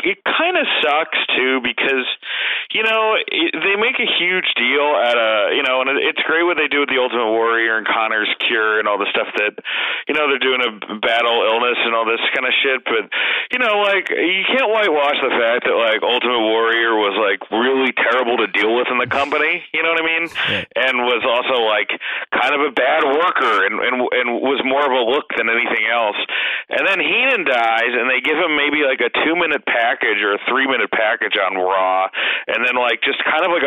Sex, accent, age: male, American, 30-49